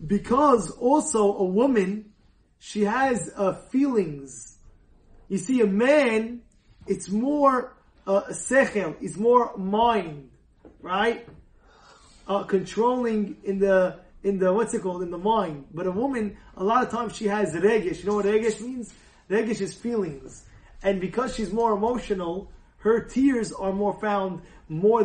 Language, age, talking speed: English, 20-39, 150 wpm